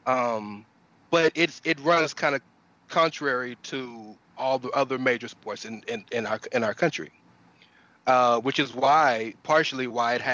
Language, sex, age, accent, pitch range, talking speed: English, male, 30-49, American, 125-150 Hz, 170 wpm